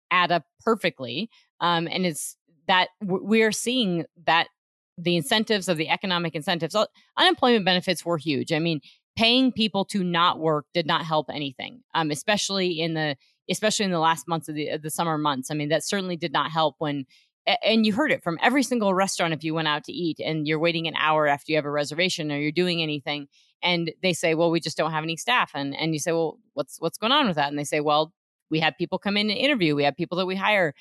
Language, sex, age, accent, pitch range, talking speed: English, female, 30-49, American, 160-200 Hz, 235 wpm